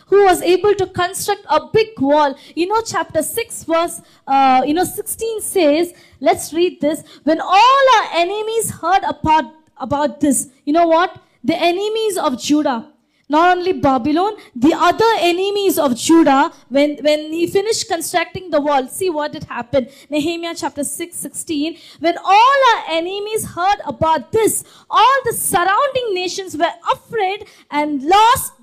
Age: 20-39